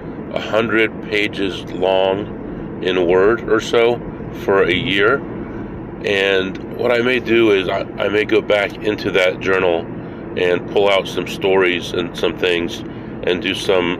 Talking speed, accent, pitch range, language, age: 155 wpm, American, 85-110 Hz, English, 40-59